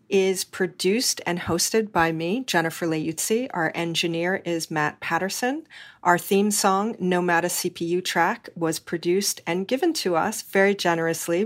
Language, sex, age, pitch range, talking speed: English, female, 40-59, 175-210 Hz, 140 wpm